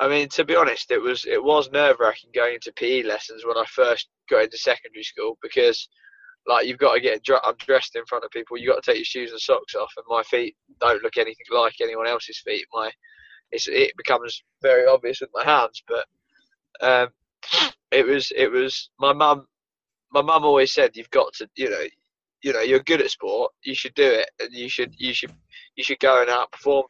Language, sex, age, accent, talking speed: English, male, 20-39, British, 225 wpm